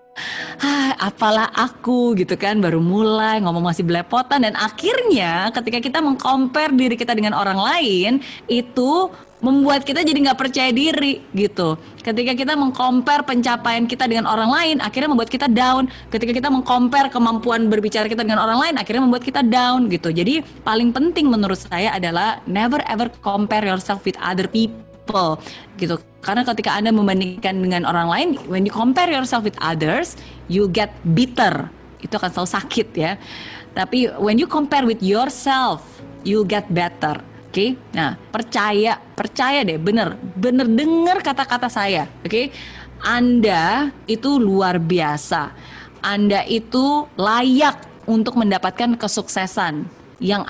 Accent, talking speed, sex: native, 145 wpm, female